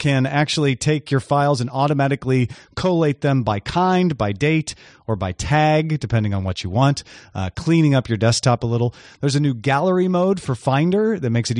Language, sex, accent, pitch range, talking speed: English, male, American, 120-175 Hz, 195 wpm